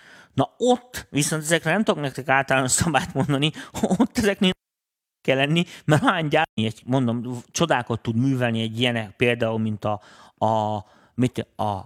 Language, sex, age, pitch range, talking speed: Hungarian, male, 30-49, 110-140 Hz, 130 wpm